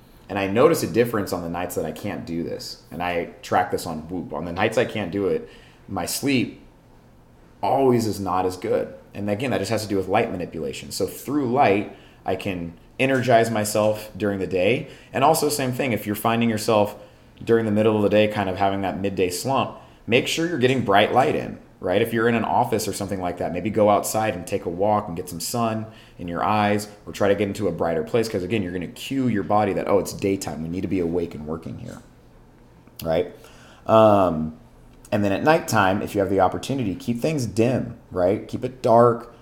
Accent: American